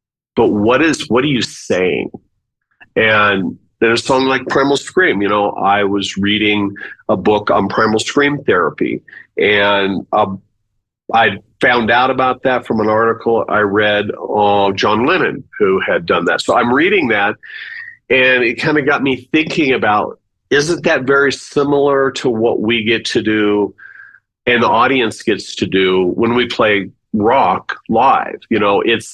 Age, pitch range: 40-59, 105-145 Hz